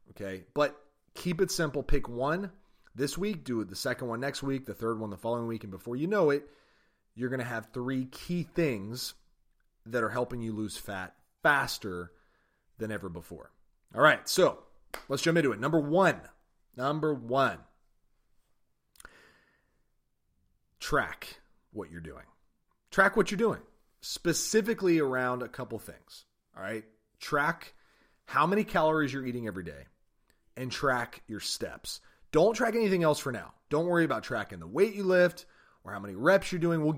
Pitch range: 110-160 Hz